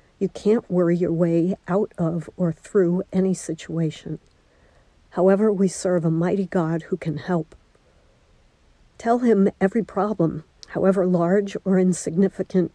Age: 60-79